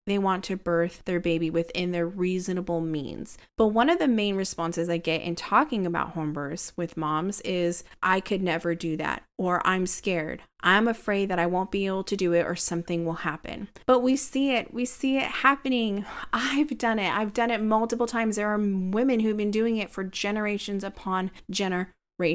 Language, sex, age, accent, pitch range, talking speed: English, female, 20-39, American, 180-230 Hz, 200 wpm